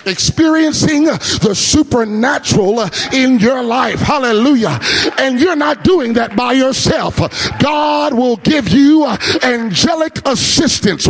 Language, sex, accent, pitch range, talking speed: English, male, American, 230-300 Hz, 110 wpm